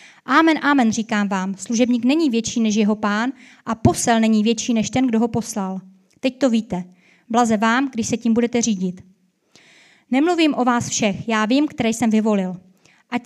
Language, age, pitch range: Czech, 20-39, 225-265 Hz